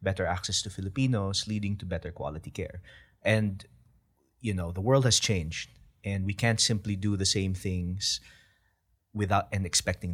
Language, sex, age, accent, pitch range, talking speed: English, male, 20-39, Filipino, 95-110 Hz, 160 wpm